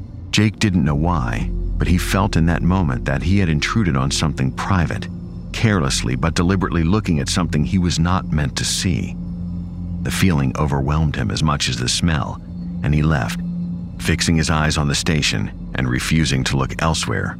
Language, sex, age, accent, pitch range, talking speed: English, male, 50-69, American, 75-90 Hz, 180 wpm